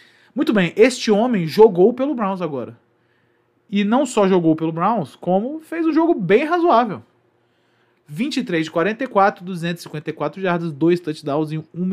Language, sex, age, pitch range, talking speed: Portuguese, male, 20-39, 130-190 Hz, 145 wpm